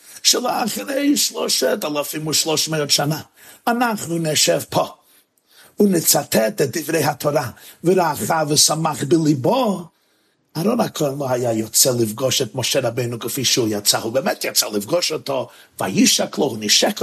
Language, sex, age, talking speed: Hebrew, male, 50-69, 130 wpm